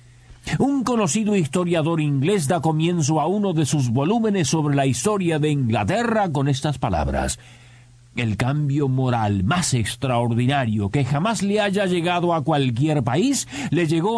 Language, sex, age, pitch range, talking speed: Spanish, male, 50-69, 110-185 Hz, 145 wpm